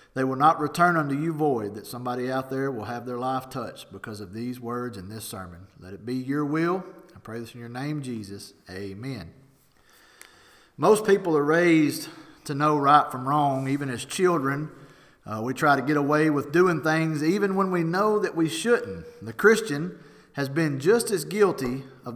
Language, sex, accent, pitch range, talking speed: English, male, American, 135-185 Hz, 195 wpm